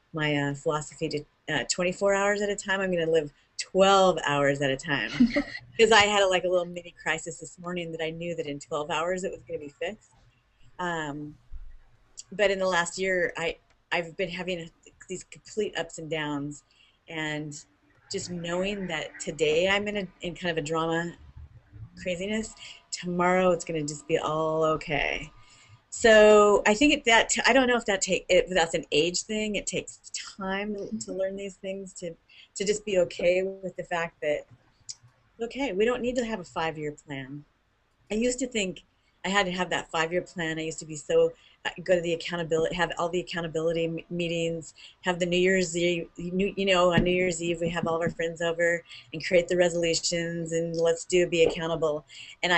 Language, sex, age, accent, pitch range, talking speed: English, female, 30-49, American, 155-190 Hz, 195 wpm